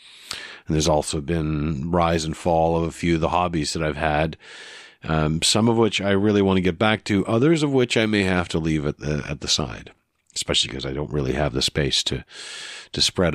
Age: 50-69